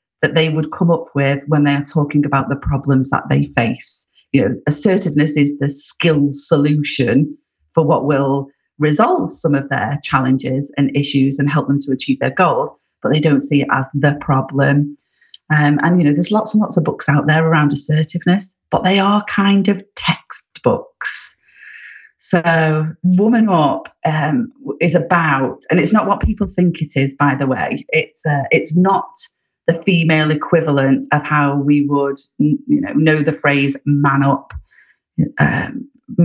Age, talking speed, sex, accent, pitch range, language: 40-59, 170 wpm, female, British, 140-165 Hz, English